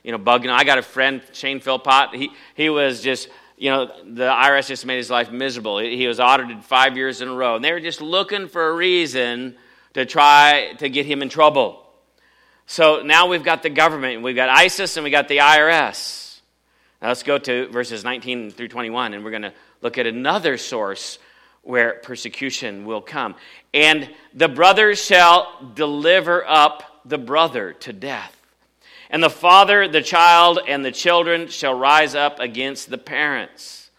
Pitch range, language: 125-165 Hz, English